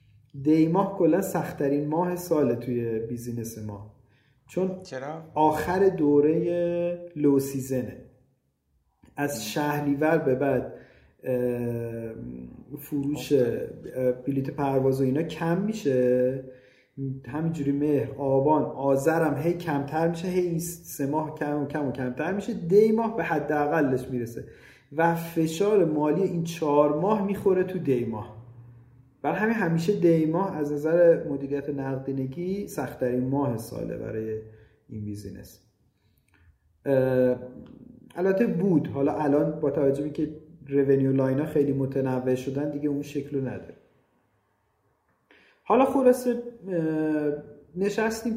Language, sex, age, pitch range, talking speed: Persian, male, 40-59, 125-165 Hz, 105 wpm